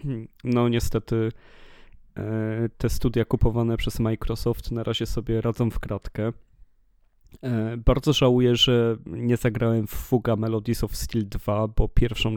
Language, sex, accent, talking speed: Polish, male, native, 125 wpm